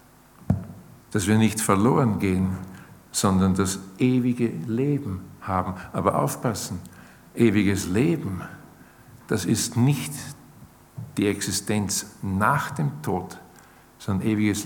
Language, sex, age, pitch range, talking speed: German, male, 50-69, 100-130 Hz, 100 wpm